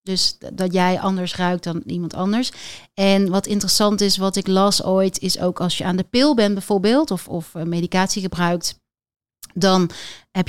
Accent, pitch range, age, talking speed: Dutch, 185-220 Hz, 40-59, 175 wpm